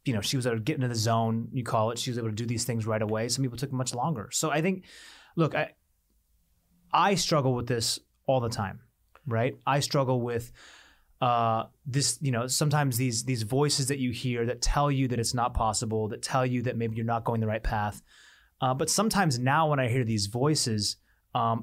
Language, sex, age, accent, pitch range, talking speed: English, male, 30-49, American, 115-140 Hz, 230 wpm